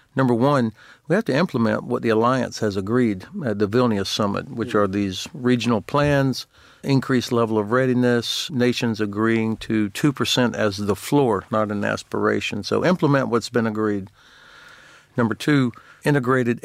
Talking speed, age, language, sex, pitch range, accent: 150 wpm, 60-79, English, male, 105-120 Hz, American